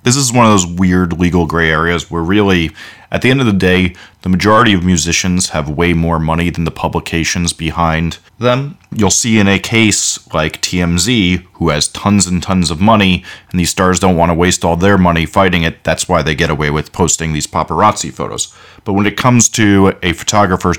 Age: 30-49